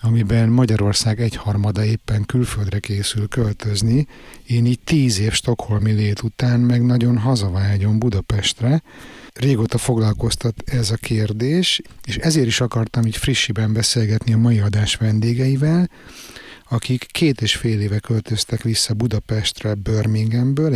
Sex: male